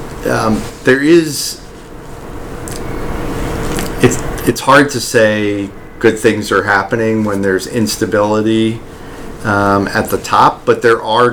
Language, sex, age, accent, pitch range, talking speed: English, male, 40-59, American, 100-115 Hz, 115 wpm